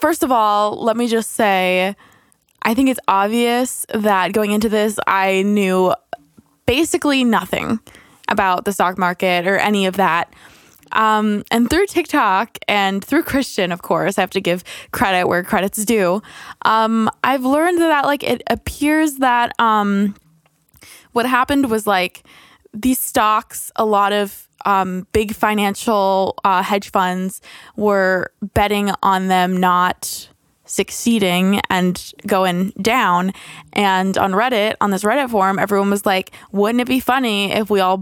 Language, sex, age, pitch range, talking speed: English, female, 20-39, 190-235 Hz, 150 wpm